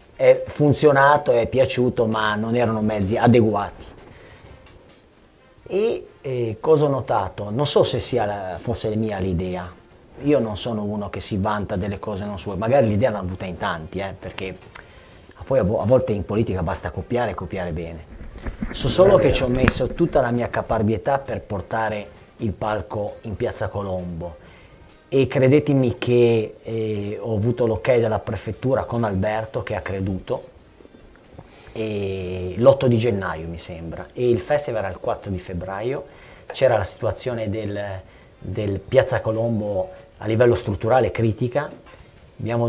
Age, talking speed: 40-59, 155 wpm